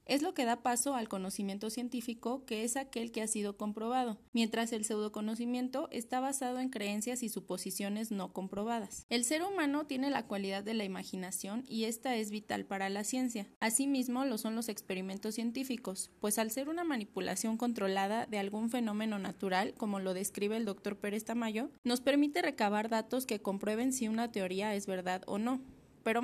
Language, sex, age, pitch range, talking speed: Spanish, female, 20-39, 195-250 Hz, 180 wpm